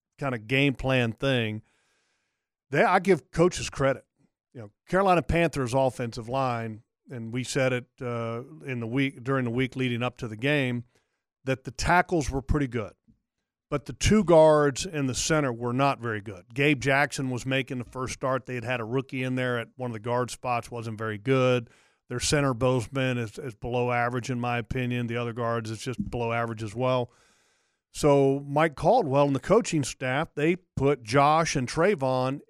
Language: English